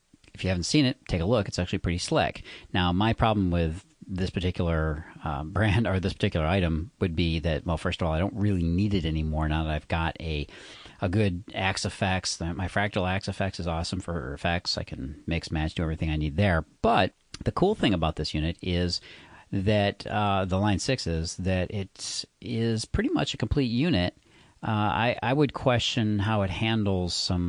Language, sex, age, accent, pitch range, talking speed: English, male, 40-59, American, 85-105 Hz, 205 wpm